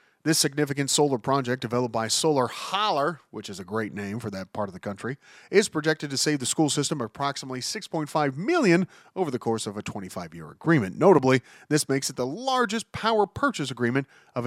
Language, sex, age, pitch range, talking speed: English, male, 40-59, 115-155 Hz, 190 wpm